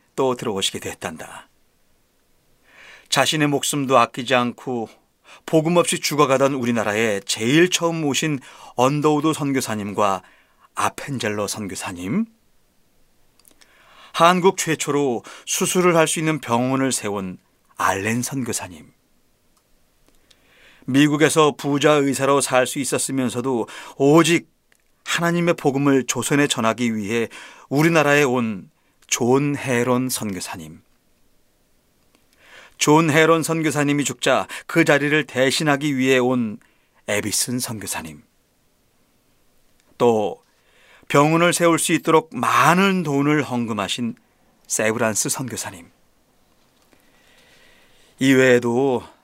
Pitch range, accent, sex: 120-155 Hz, native, male